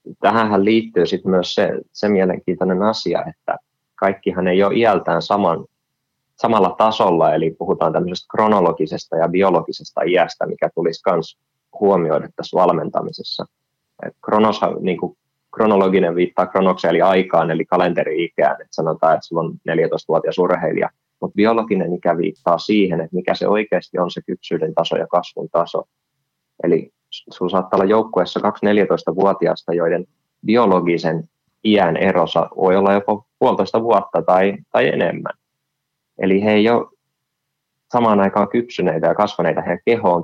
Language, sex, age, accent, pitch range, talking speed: Finnish, male, 20-39, native, 90-105 Hz, 135 wpm